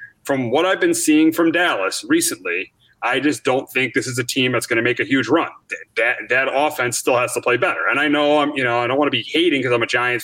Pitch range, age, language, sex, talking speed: 130-165 Hz, 30-49, English, male, 275 wpm